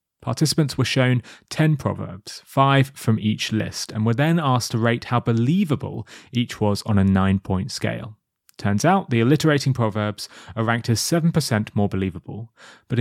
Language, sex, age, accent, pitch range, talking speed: English, male, 30-49, British, 110-145 Hz, 165 wpm